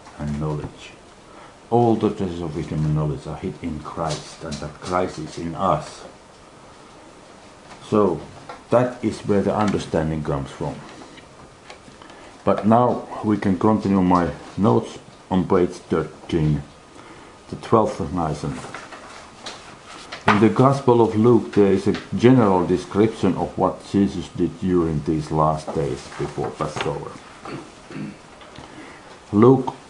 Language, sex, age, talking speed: English, male, 60-79, 120 wpm